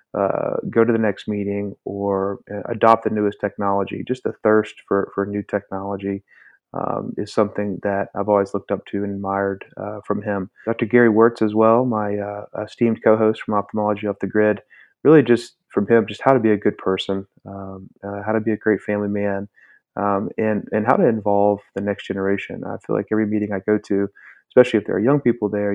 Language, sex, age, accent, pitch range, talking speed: English, male, 30-49, American, 100-110 Hz, 210 wpm